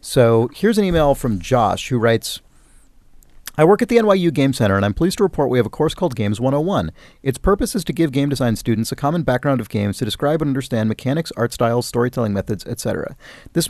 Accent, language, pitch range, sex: American, English, 110-145 Hz, male